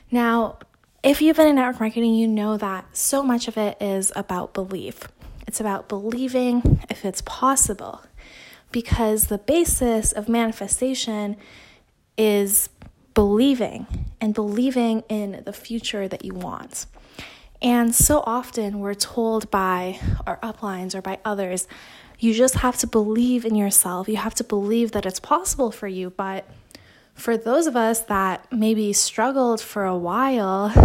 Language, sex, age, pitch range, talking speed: English, female, 20-39, 200-240 Hz, 150 wpm